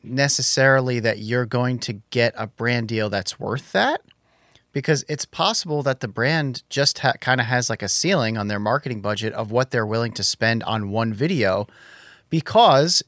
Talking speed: 180 wpm